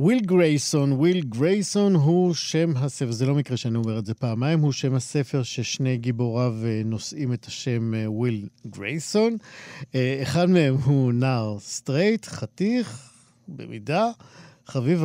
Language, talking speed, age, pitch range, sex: Hebrew, 130 wpm, 50-69, 120-160 Hz, male